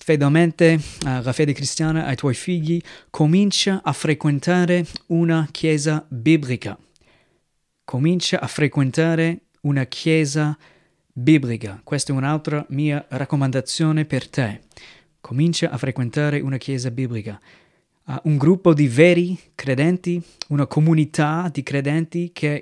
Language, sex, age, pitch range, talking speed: Italian, male, 30-49, 135-165 Hz, 110 wpm